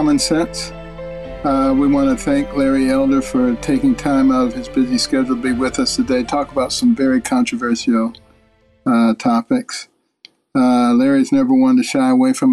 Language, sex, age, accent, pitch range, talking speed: English, male, 50-69, American, 230-270 Hz, 175 wpm